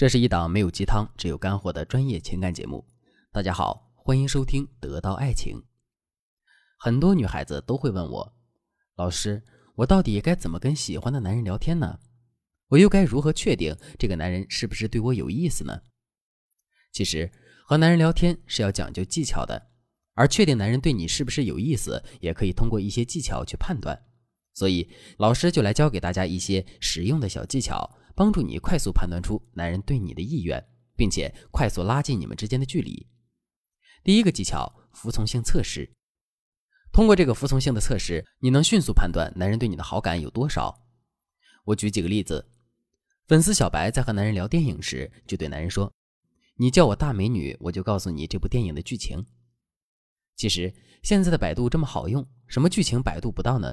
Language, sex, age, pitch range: Chinese, male, 20-39, 95-135 Hz